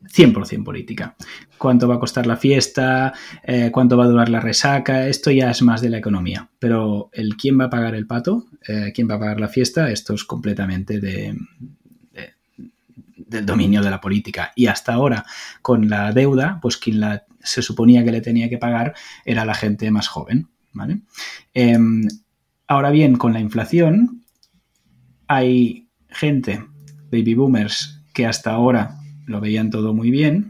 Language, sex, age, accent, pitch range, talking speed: Spanish, male, 20-39, Spanish, 110-140 Hz, 160 wpm